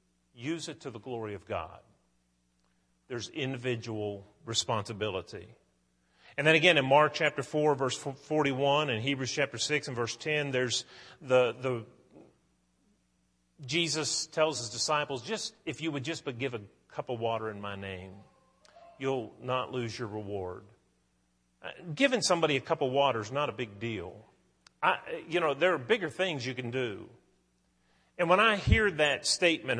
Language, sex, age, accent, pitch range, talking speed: English, male, 40-59, American, 110-150 Hz, 160 wpm